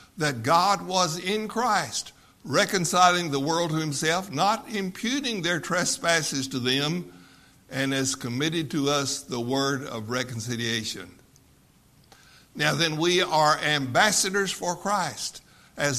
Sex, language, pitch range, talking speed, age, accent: male, English, 130-175 Hz, 125 wpm, 60-79, American